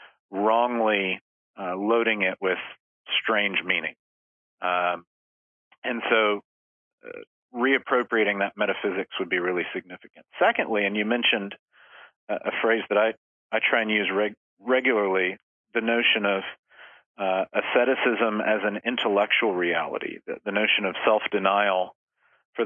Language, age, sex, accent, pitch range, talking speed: English, 40-59, male, American, 95-115 Hz, 125 wpm